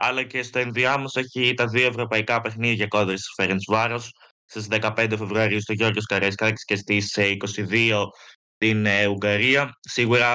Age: 20-39